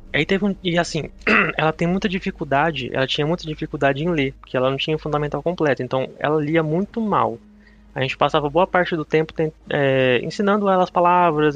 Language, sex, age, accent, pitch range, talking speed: Portuguese, male, 20-39, Brazilian, 130-175 Hz, 195 wpm